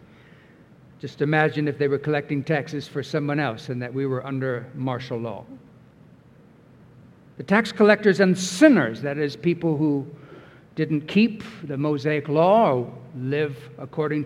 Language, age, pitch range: English, 60-79, 145-195 Hz